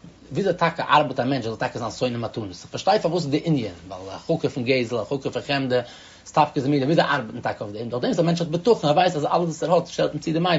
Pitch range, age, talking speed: 120-160 Hz, 30-49, 205 wpm